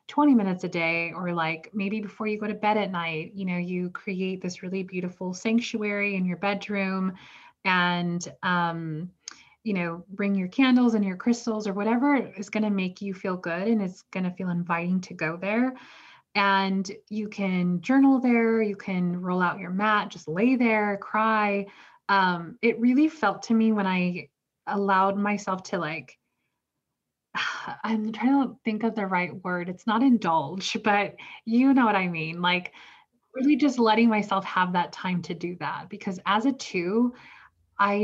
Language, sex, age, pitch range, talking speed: English, female, 20-39, 180-215 Hz, 180 wpm